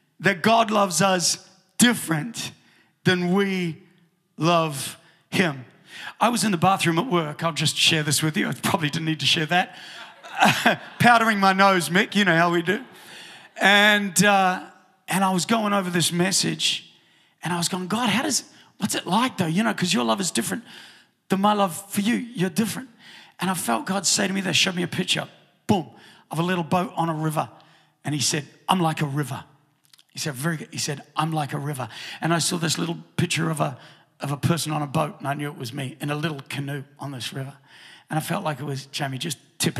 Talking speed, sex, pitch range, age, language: 220 wpm, male, 155-195 Hz, 40-59, English